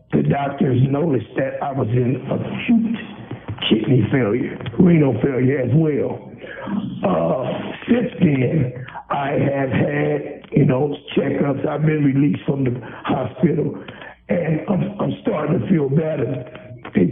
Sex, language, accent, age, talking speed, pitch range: male, English, American, 60-79, 130 wpm, 125-150 Hz